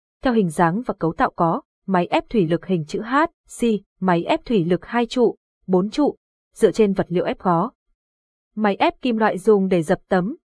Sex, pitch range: female, 185-250 Hz